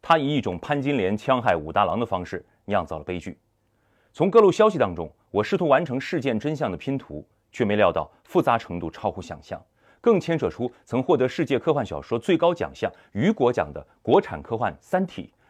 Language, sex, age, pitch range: Chinese, male, 30-49, 100-155 Hz